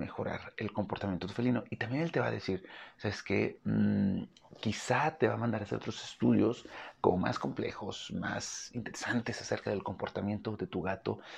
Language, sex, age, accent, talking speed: Spanish, male, 40-59, Mexican, 200 wpm